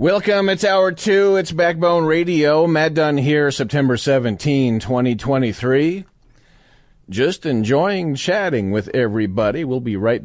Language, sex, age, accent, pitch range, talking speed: English, male, 40-59, American, 110-150 Hz, 125 wpm